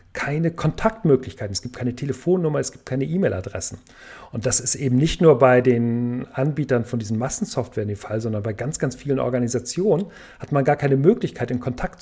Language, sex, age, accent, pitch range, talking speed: German, male, 40-59, German, 120-160 Hz, 185 wpm